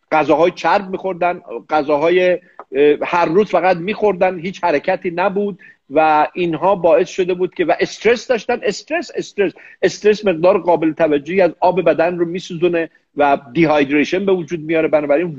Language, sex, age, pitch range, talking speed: Persian, male, 50-69, 155-190 Hz, 145 wpm